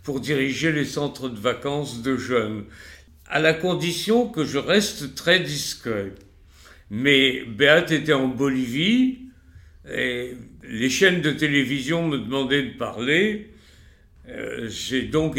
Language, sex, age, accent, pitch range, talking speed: French, male, 60-79, French, 105-145 Hz, 130 wpm